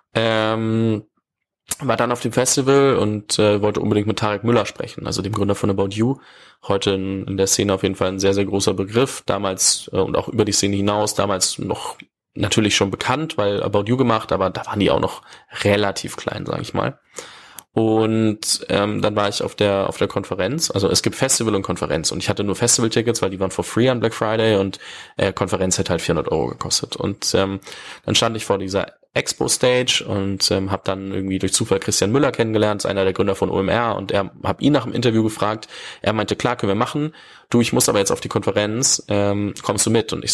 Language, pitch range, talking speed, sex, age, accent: German, 95-115 Hz, 225 wpm, male, 20-39, German